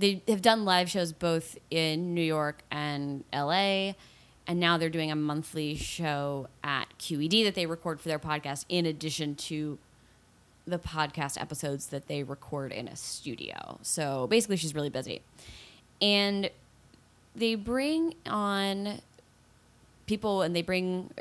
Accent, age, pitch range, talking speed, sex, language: American, 20-39, 145-180 Hz, 140 wpm, female, English